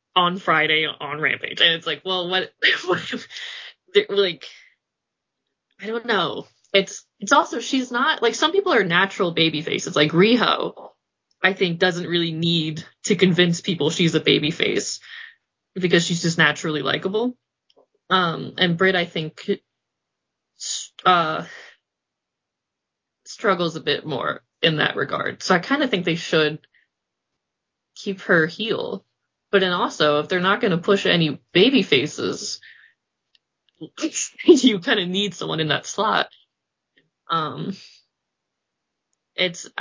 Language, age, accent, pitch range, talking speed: English, 20-39, American, 160-215 Hz, 135 wpm